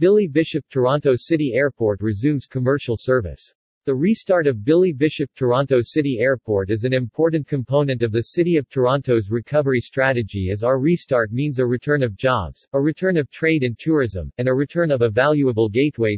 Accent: American